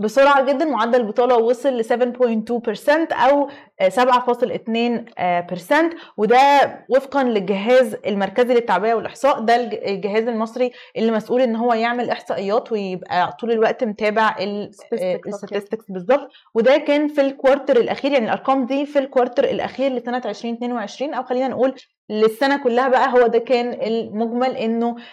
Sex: female